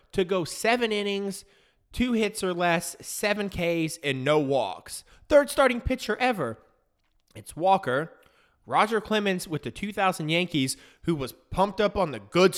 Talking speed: 155 wpm